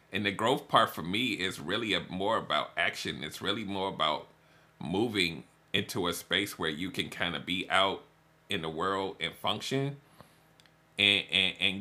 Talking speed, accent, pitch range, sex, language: 180 wpm, American, 100-160 Hz, male, English